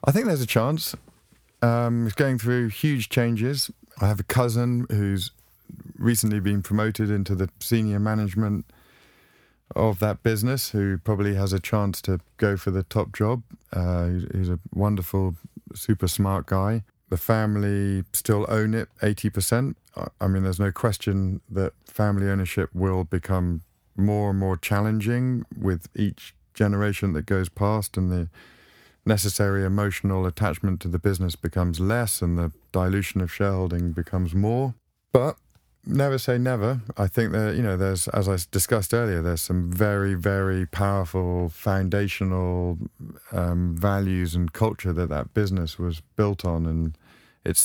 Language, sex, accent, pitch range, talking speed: English, male, British, 95-110 Hz, 150 wpm